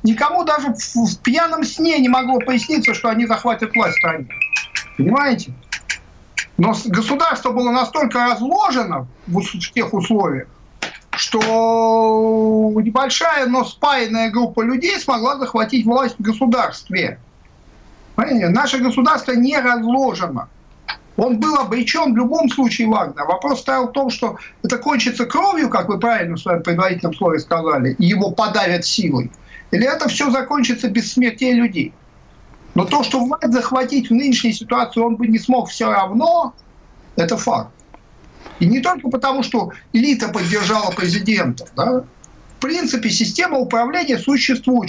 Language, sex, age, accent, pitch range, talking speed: Russian, male, 50-69, native, 220-260 Hz, 135 wpm